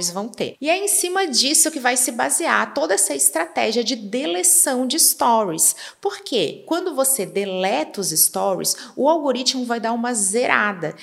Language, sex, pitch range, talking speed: Portuguese, female, 225-295 Hz, 165 wpm